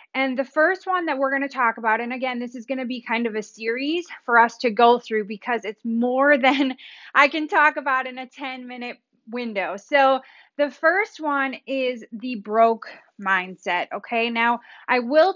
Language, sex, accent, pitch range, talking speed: English, female, American, 235-275 Hz, 200 wpm